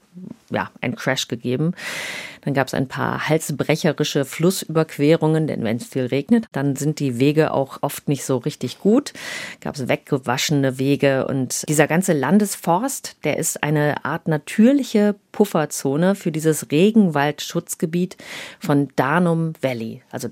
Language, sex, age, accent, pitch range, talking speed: German, female, 40-59, German, 135-180 Hz, 140 wpm